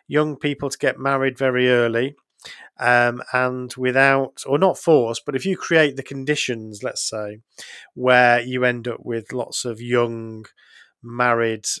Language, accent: English, British